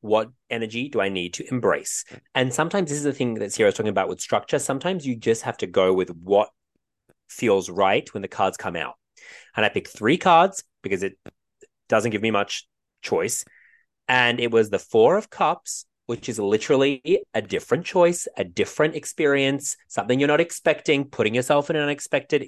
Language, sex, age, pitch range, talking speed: English, male, 30-49, 110-145 Hz, 190 wpm